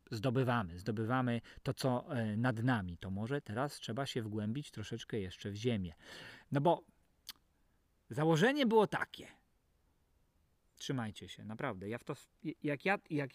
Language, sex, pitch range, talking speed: Polish, male, 105-175 Hz, 135 wpm